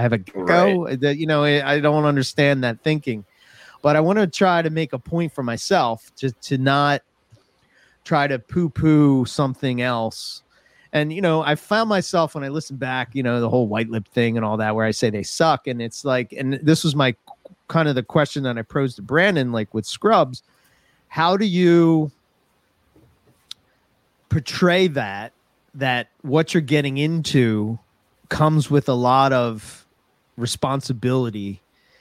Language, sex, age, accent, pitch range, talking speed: English, male, 30-49, American, 120-155 Hz, 170 wpm